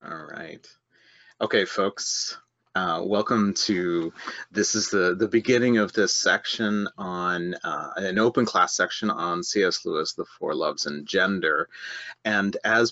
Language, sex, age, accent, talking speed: English, male, 30-49, American, 145 wpm